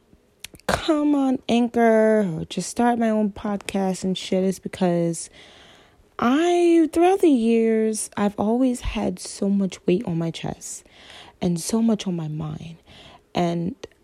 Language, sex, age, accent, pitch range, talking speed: English, female, 20-39, American, 175-220 Hz, 140 wpm